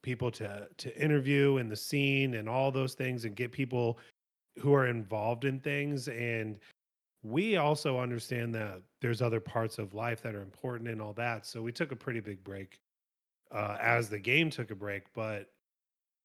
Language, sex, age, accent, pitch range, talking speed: English, male, 30-49, American, 105-125 Hz, 185 wpm